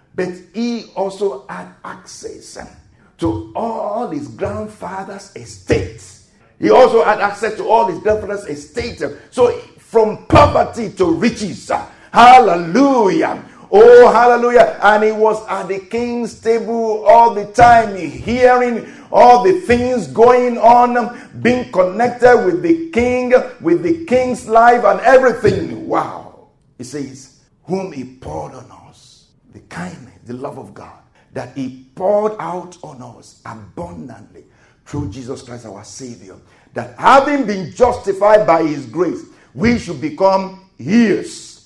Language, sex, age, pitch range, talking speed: English, male, 50-69, 180-245 Hz, 130 wpm